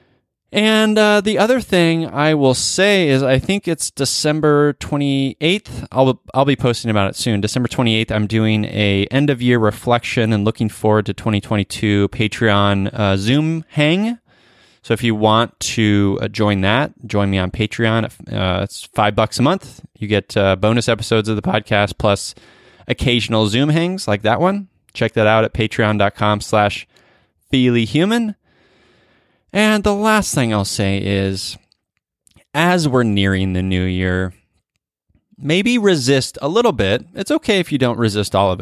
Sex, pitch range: male, 100-140 Hz